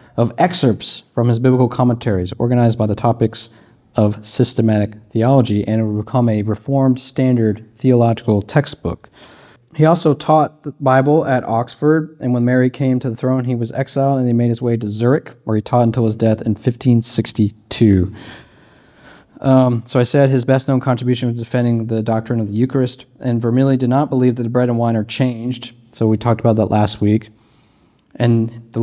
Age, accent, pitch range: 40-59, American, 115-130 Hz